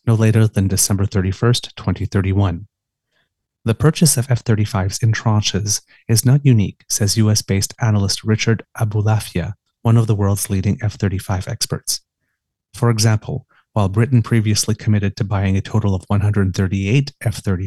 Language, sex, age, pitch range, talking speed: English, male, 30-49, 100-120 Hz, 130 wpm